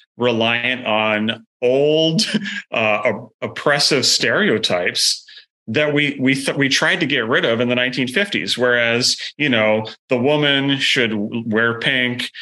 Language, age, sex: English, 30-49, male